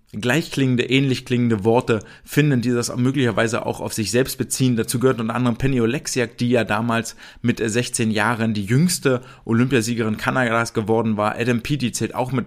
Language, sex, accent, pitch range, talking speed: German, male, German, 110-130 Hz, 175 wpm